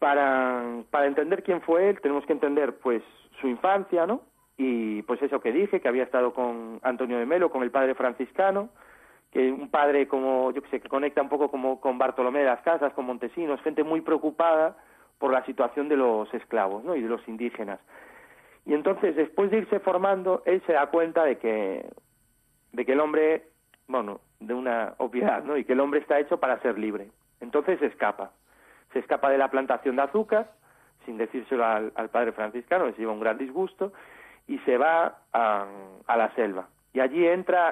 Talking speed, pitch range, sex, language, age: 195 wpm, 120-160 Hz, male, Spanish, 40-59